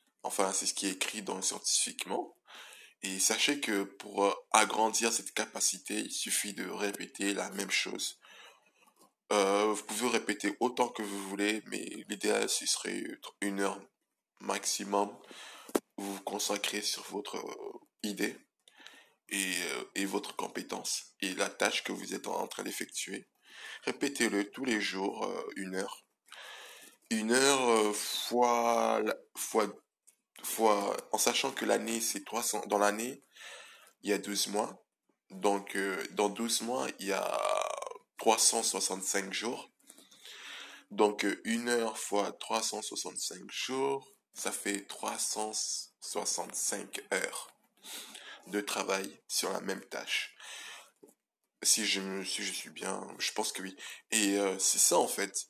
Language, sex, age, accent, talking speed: French, male, 20-39, French, 135 wpm